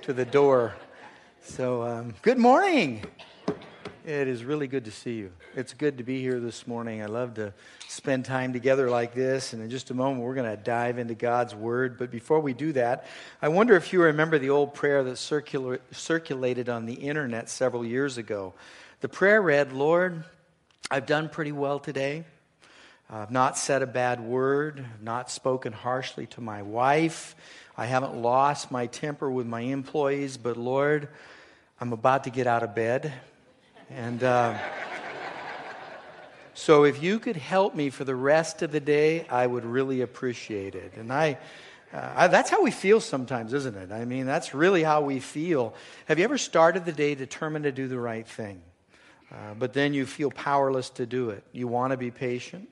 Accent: American